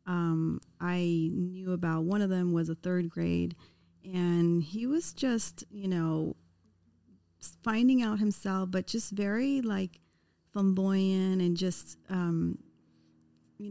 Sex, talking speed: female, 125 wpm